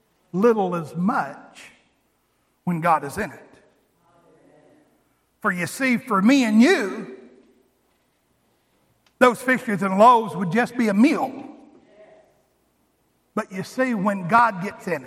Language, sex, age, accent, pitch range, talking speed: English, male, 50-69, American, 175-285 Hz, 125 wpm